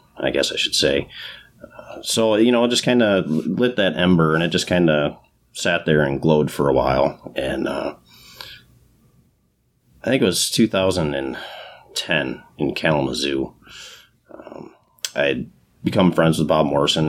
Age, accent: 30-49, American